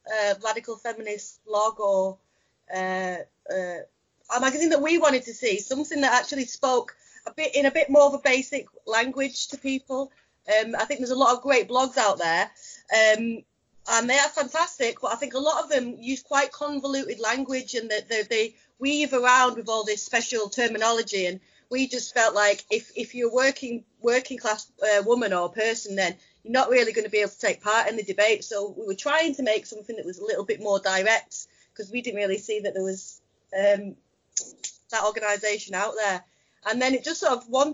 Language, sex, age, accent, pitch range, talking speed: English, female, 30-49, British, 215-280 Hz, 210 wpm